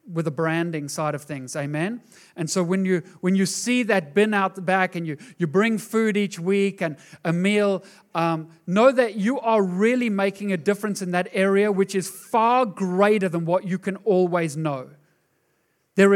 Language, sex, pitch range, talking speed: English, male, 145-190 Hz, 195 wpm